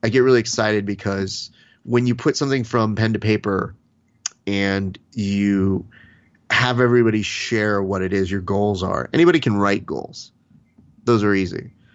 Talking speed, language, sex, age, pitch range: 155 wpm, English, male, 30-49, 100-115 Hz